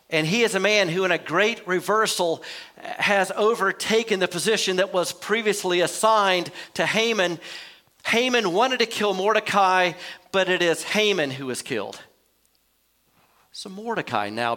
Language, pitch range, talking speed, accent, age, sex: English, 160-205 Hz, 145 wpm, American, 50-69, male